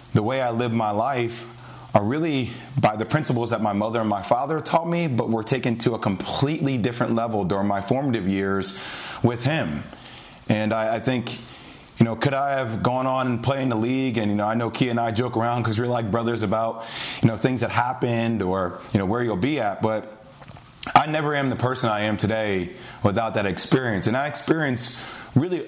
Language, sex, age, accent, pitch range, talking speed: English, male, 30-49, American, 110-130 Hz, 215 wpm